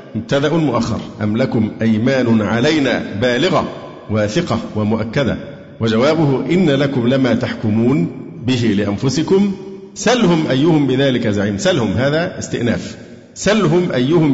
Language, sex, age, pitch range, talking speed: Arabic, male, 50-69, 115-140 Hz, 105 wpm